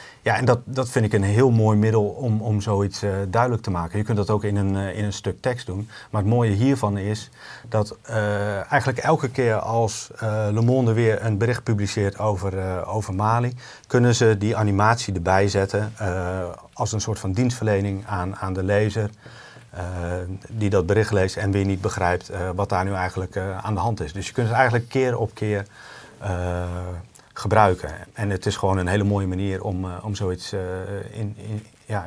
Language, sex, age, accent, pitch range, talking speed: Dutch, male, 40-59, Dutch, 95-115 Hz, 200 wpm